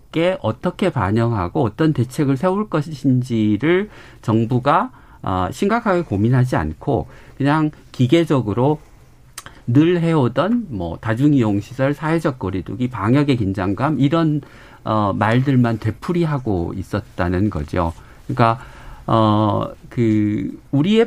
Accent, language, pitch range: native, Korean, 110-155 Hz